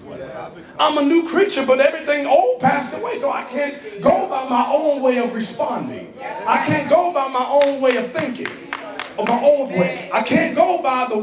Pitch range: 240-285 Hz